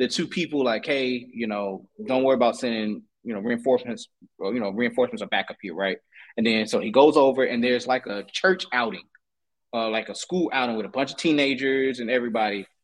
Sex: male